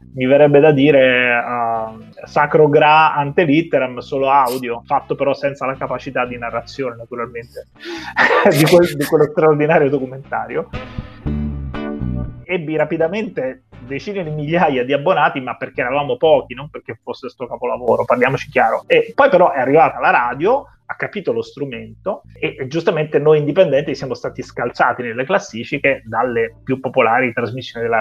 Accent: native